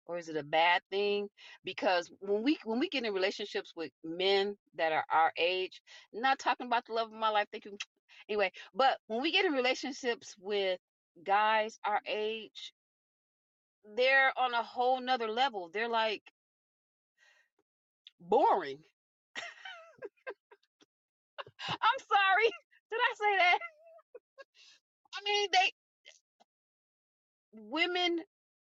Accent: American